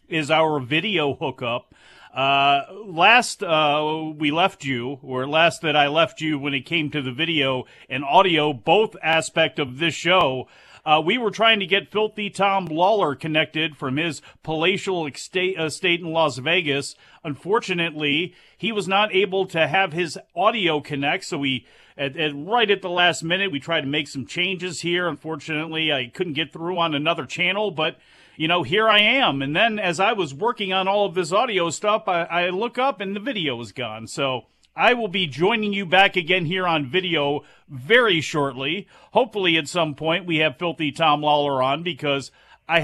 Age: 40-59